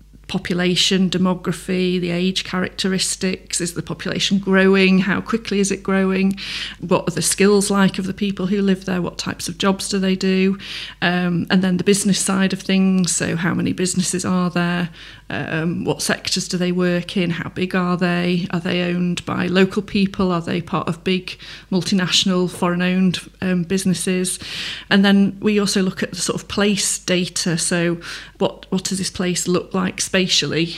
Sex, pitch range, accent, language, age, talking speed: female, 175-195 Hz, British, English, 30-49, 180 wpm